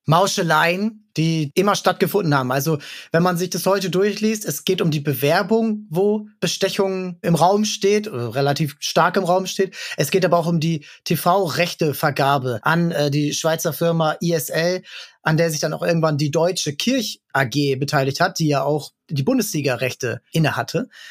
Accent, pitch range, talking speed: German, 155-185 Hz, 165 wpm